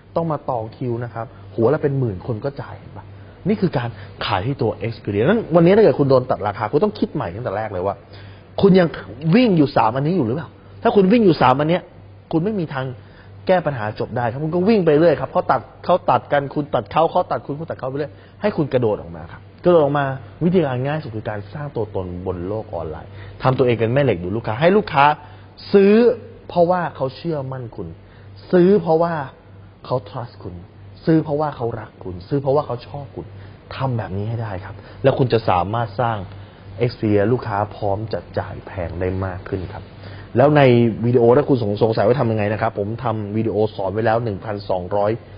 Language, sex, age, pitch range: Thai, male, 20-39, 100-140 Hz